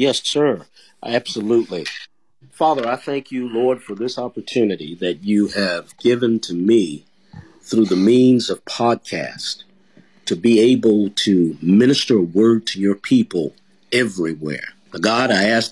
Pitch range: 90-110 Hz